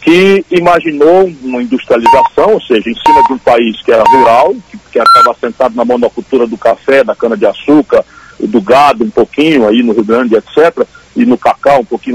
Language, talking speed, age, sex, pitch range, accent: Portuguese, 190 wpm, 60-79, male, 155-230 Hz, Brazilian